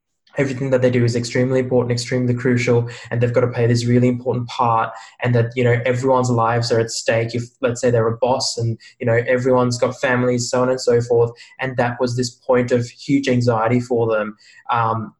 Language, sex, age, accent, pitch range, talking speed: English, male, 20-39, Australian, 120-130 Hz, 215 wpm